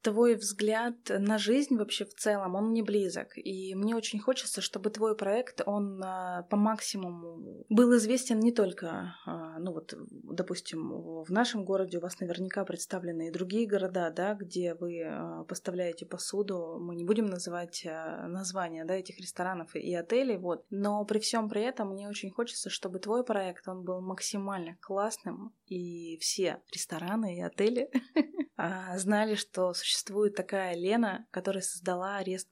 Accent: native